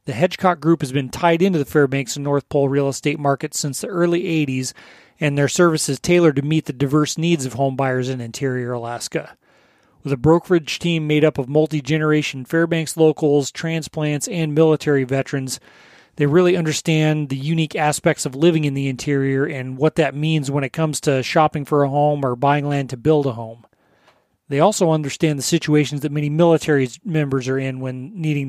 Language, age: English, 30-49